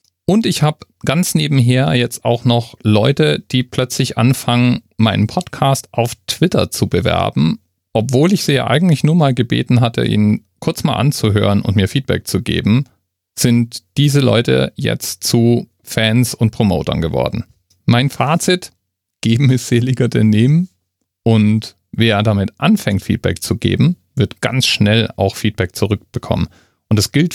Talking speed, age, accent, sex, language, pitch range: 150 wpm, 40-59, German, male, German, 95-125 Hz